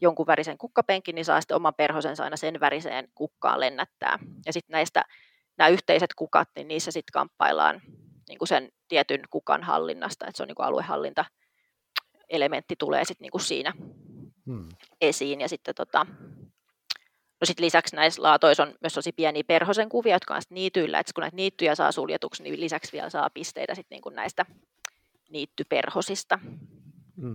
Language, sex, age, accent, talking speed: Finnish, female, 30-49, native, 160 wpm